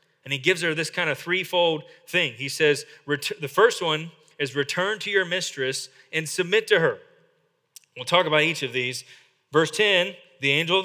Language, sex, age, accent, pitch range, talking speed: English, male, 30-49, American, 165-235 Hz, 190 wpm